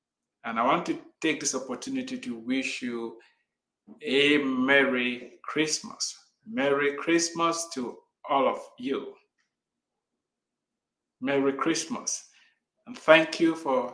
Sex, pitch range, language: male, 130-170 Hz, English